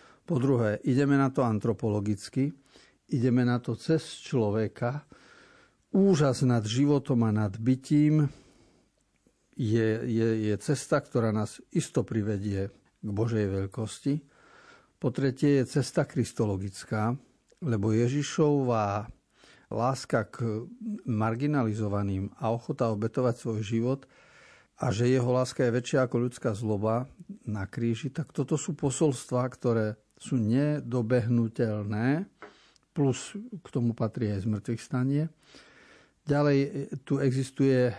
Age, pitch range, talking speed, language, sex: 50-69, 110-140 Hz, 110 wpm, Slovak, male